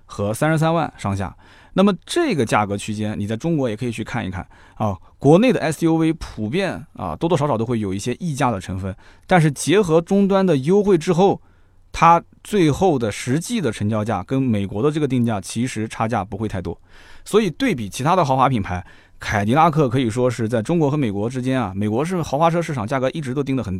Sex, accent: male, native